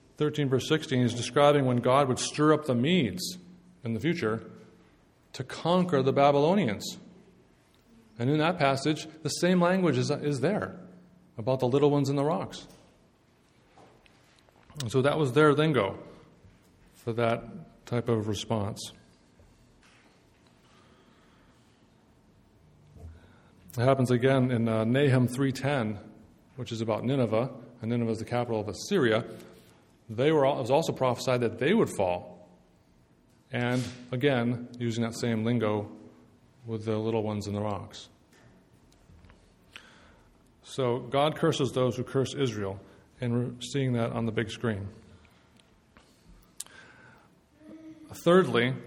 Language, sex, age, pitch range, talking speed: English, male, 30-49, 115-145 Hz, 130 wpm